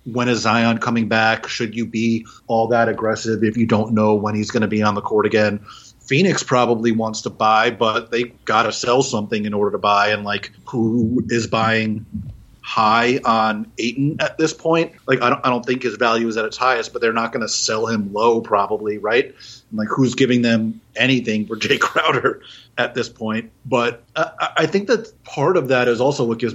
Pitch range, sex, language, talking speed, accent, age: 110-140 Hz, male, English, 215 wpm, American, 30-49